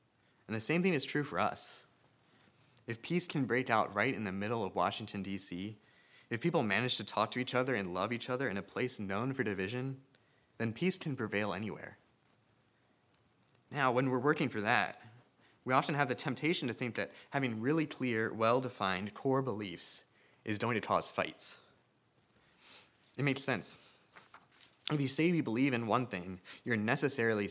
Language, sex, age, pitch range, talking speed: English, male, 20-39, 105-130 Hz, 175 wpm